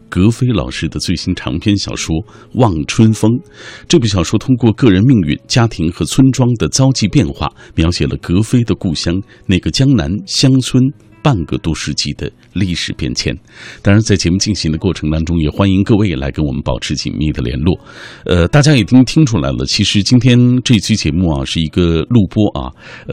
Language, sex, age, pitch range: Chinese, male, 50-69, 80-115 Hz